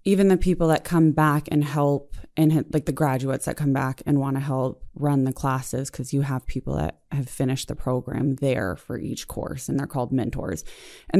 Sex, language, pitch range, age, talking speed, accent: female, English, 140-165 Hz, 20-39, 215 wpm, American